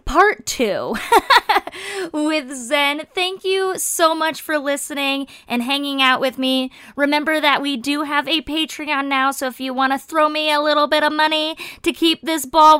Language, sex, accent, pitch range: English, female, American, 240-305 Hz